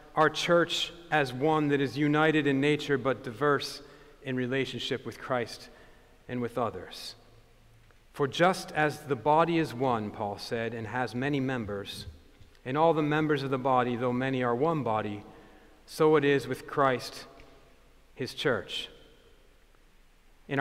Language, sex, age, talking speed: English, male, 40-59, 150 wpm